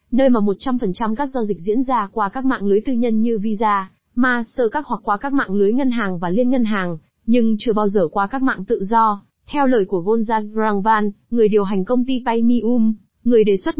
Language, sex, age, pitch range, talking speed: Vietnamese, female, 20-39, 205-250 Hz, 225 wpm